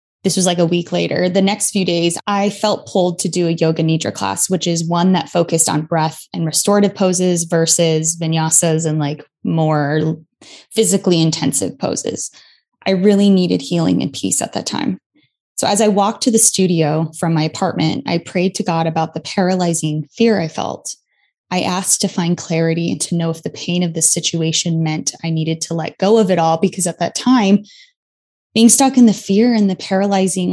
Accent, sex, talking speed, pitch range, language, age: American, female, 200 wpm, 165-200 Hz, English, 20-39